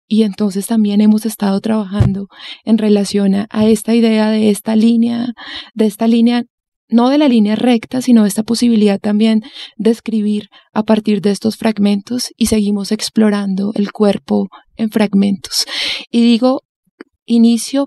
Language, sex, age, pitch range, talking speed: Spanish, female, 20-39, 210-235 Hz, 150 wpm